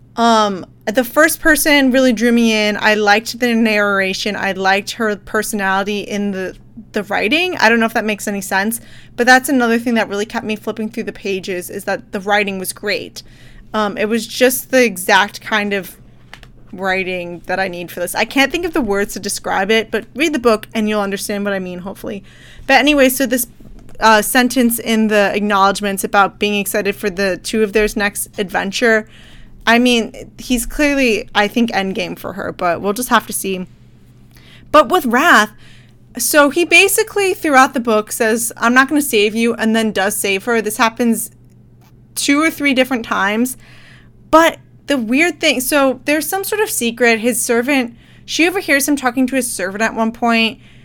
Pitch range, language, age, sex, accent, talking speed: 205-255 Hz, English, 20-39, female, American, 195 wpm